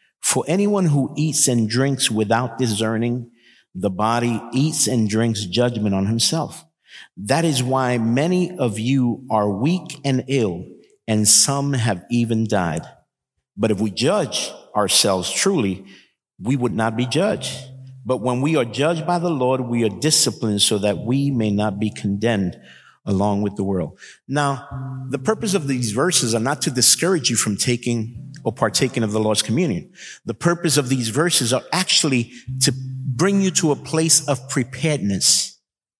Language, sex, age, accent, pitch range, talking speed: English, male, 50-69, American, 115-145 Hz, 165 wpm